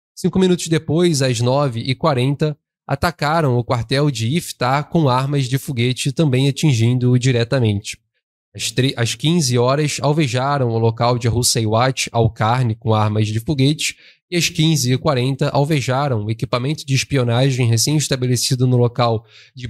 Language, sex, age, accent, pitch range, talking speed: Portuguese, male, 20-39, Brazilian, 120-150 Hz, 130 wpm